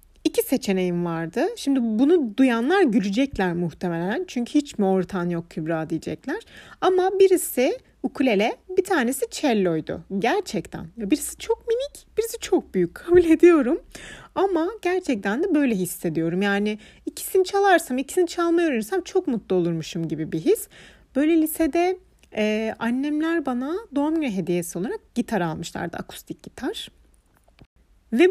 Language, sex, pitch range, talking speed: Turkish, female, 215-355 Hz, 125 wpm